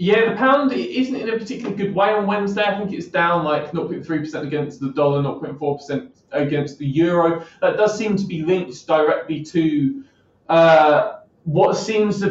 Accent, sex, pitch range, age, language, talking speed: British, male, 145-175 Hz, 20-39, English, 180 wpm